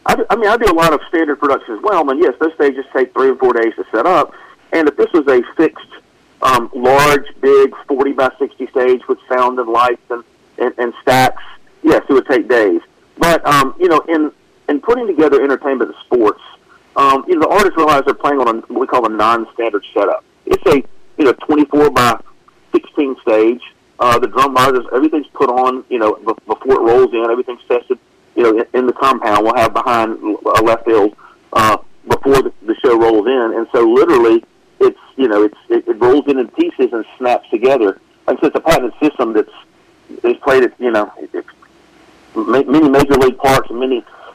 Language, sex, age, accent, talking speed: English, male, 50-69, American, 205 wpm